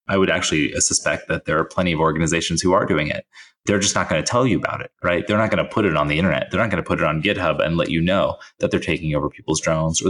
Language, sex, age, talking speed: English, male, 30-49, 310 wpm